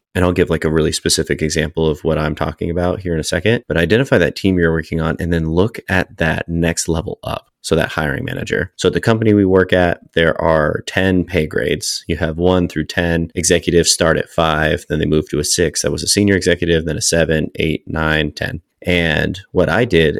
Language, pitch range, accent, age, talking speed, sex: English, 80-90 Hz, American, 30-49, 235 wpm, male